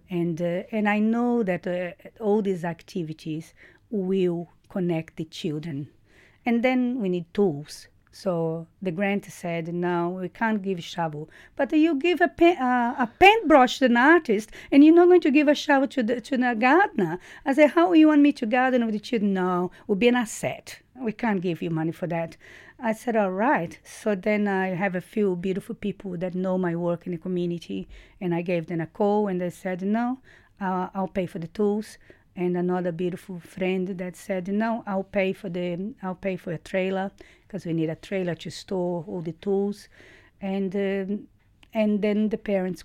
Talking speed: 200 wpm